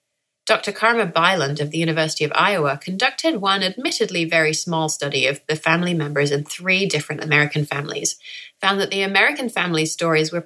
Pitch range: 155-195 Hz